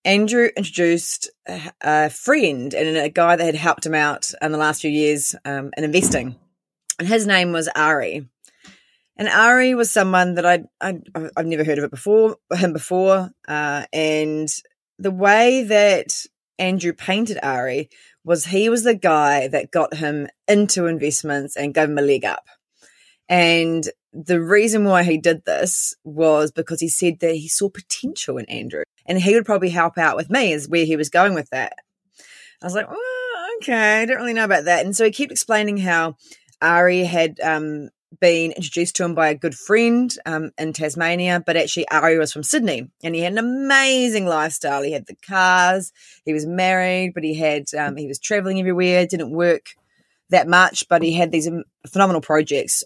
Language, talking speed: English, 185 wpm